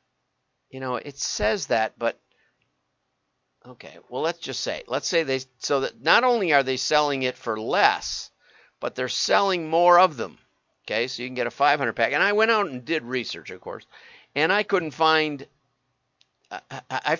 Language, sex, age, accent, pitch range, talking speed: English, male, 50-69, American, 130-180 Hz, 180 wpm